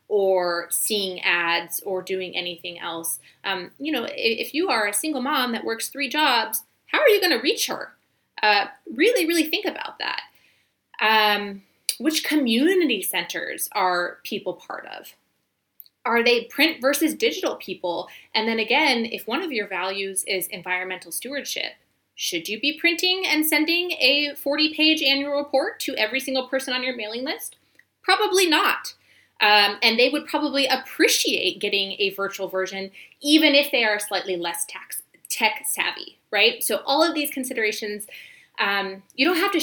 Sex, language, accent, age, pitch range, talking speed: female, English, American, 20-39, 195-295 Hz, 160 wpm